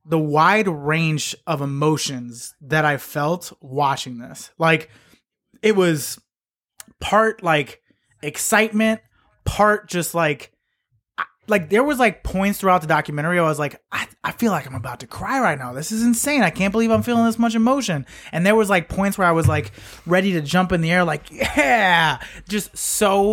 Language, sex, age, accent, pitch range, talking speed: English, male, 20-39, American, 145-190 Hz, 180 wpm